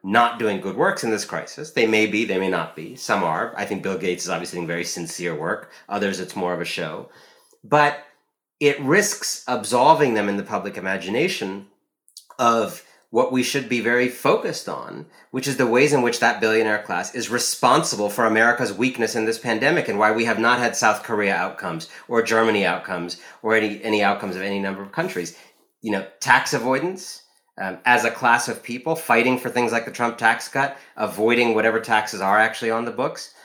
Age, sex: 30-49, male